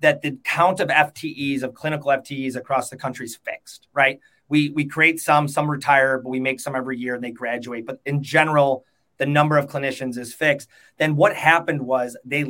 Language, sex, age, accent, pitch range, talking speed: English, male, 30-49, American, 130-150 Hz, 205 wpm